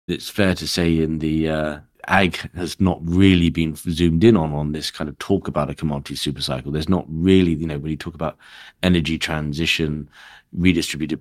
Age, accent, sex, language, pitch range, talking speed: 40-59, British, male, English, 75-85 Hz, 195 wpm